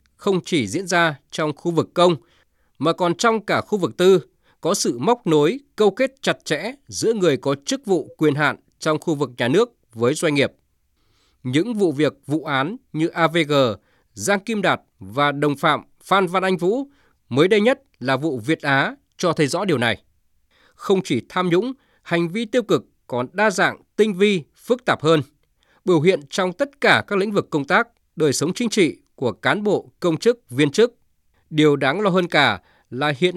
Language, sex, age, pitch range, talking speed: Vietnamese, male, 20-39, 145-200 Hz, 200 wpm